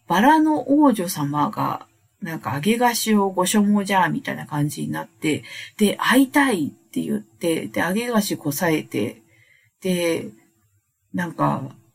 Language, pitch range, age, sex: Japanese, 145-225 Hz, 50-69, female